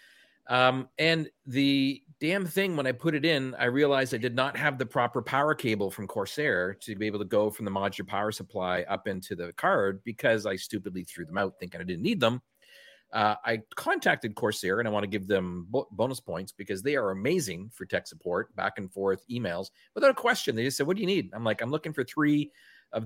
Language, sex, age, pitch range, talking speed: English, male, 40-59, 105-145 Hz, 225 wpm